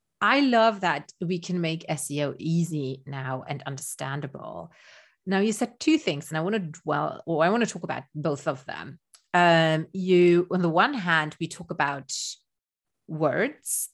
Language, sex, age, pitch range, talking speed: English, female, 30-49, 155-205 Hz, 170 wpm